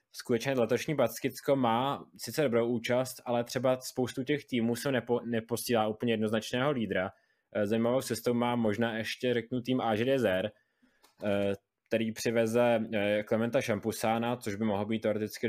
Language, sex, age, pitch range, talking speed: Czech, male, 20-39, 105-115 Hz, 135 wpm